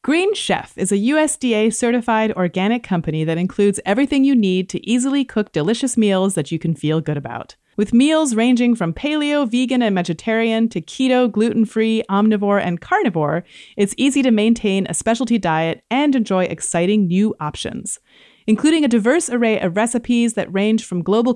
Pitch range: 180-245 Hz